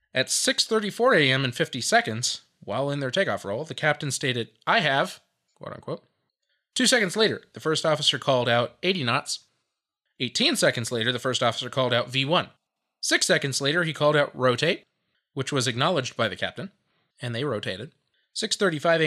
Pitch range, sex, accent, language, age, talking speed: 130-175 Hz, male, American, English, 20-39, 165 wpm